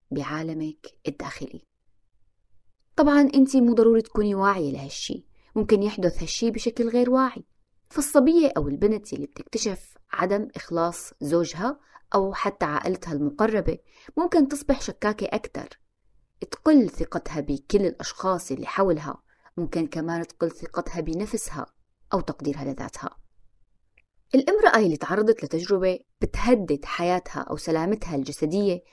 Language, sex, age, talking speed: Arabic, female, 20-39, 110 wpm